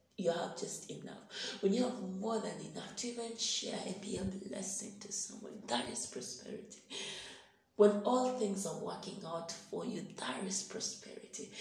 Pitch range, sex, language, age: 190-215 Hz, female, English, 30-49